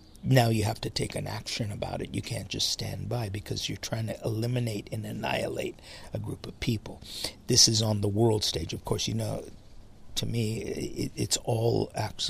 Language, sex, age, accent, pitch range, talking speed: English, male, 50-69, American, 105-120 Hz, 195 wpm